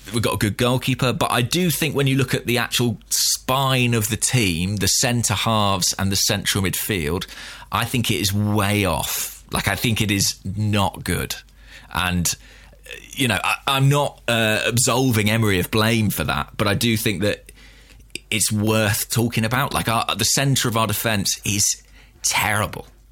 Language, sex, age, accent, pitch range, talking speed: English, male, 20-39, British, 100-125 Hz, 175 wpm